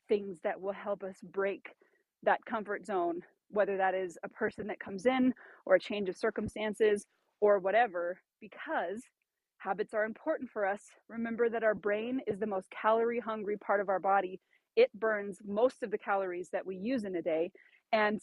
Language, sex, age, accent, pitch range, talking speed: English, female, 30-49, American, 200-260 Hz, 185 wpm